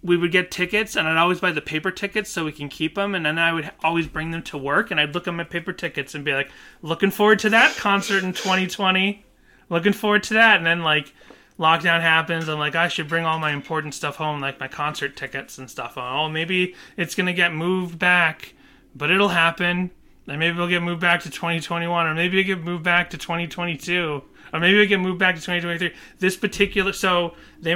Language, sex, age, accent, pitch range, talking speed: English, male, 30-49, American, 150-175 Hz, 235 wpm